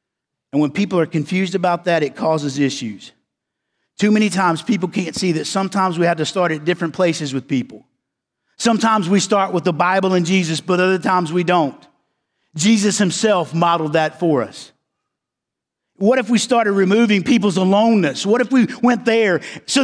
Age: 50-69